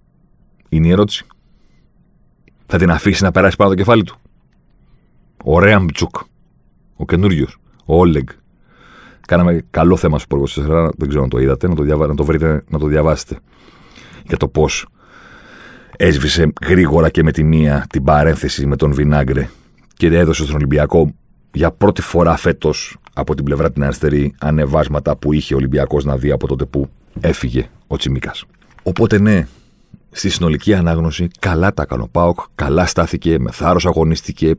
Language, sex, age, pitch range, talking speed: Greek, male, 40-59, 75-105 Hz, 155 wpm